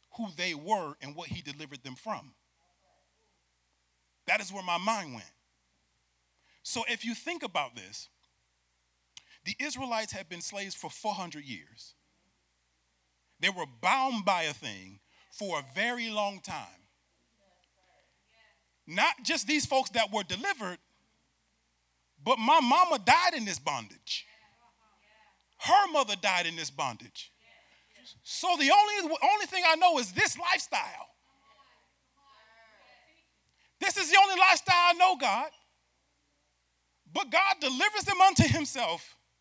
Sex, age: male, 40-59